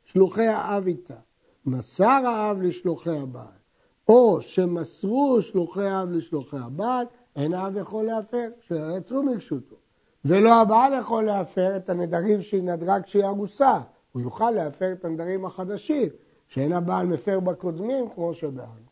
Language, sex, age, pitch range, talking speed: Hebrew, male, 60-79, 165-225 Hz, 130 wpm